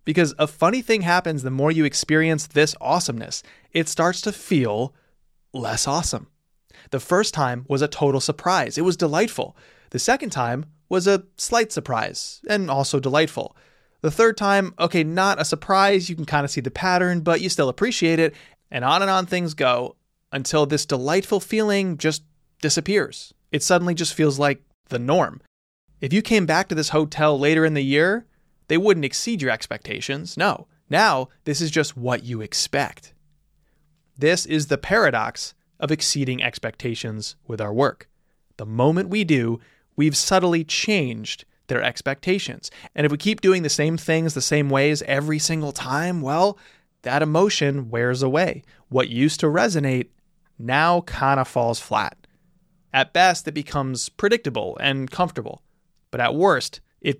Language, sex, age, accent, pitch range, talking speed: English, male, 20-39, American, 140-175 Hz, 165 wpm